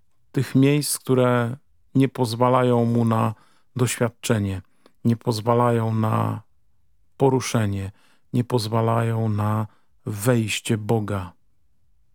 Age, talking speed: 40-59, 85 wpm